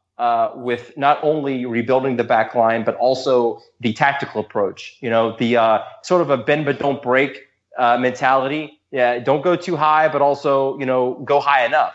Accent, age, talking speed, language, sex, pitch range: American, 20-39, 190 wpm, English, male, 130-165 Hz